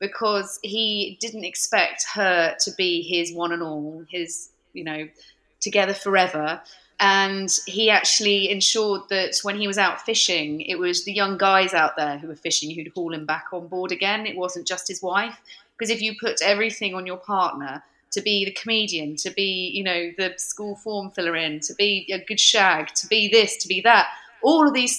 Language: English